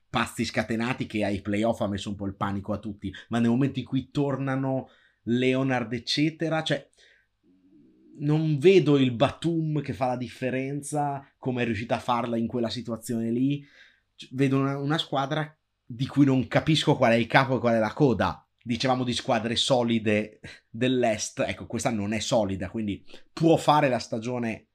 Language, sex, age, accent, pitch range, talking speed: Italian, male, 30-49, native, 105-135 Hz, 170 wpm